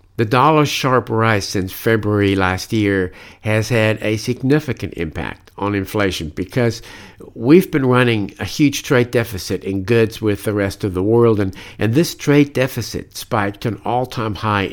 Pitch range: 95-120 Hz